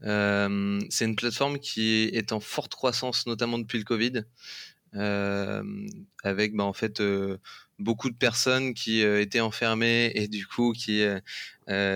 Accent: French